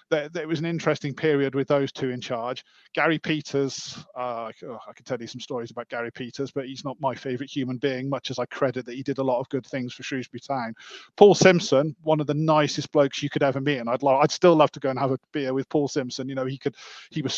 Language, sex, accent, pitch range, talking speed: English, male, British, 135-160 Hz, 270 wpm